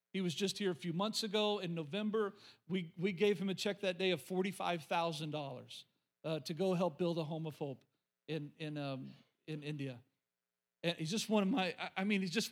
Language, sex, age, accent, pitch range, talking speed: English, male, 40-59, American, 160-220 Hz, 200 wpm